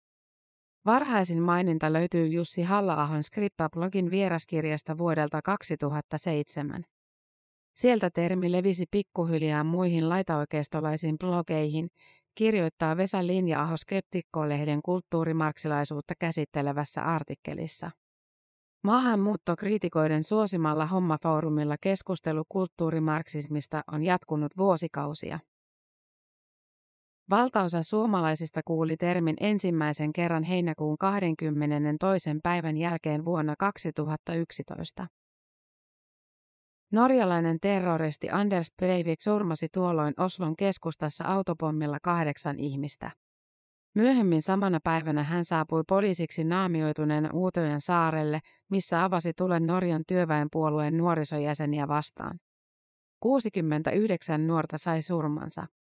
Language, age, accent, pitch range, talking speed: Finnish, 30-49, native, 155-185 Hz, 80 wpm